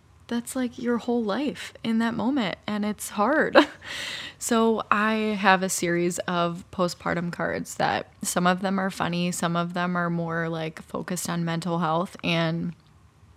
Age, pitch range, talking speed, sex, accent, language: 20-39, 175-205 Hz, 160 wpm, female, American, English